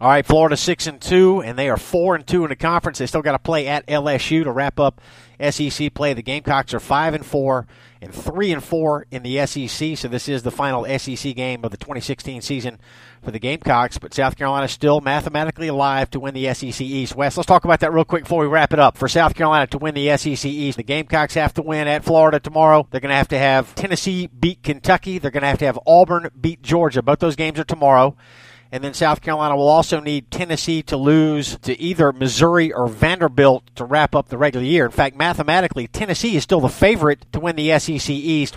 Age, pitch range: 50-69, 135-160 Hz